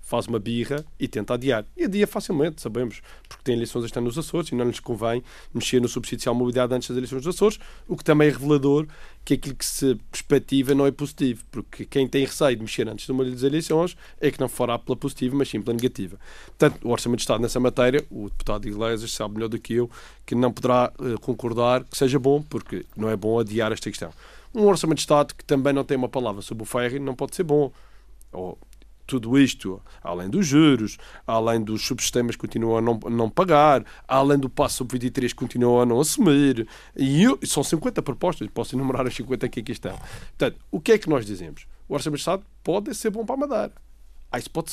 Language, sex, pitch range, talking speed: Portuguese, male, 115-150 Hz, 225 wpm